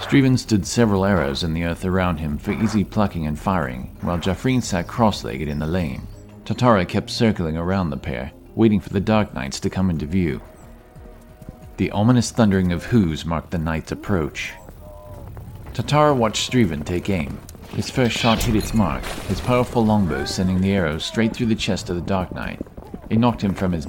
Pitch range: 85-110 Hz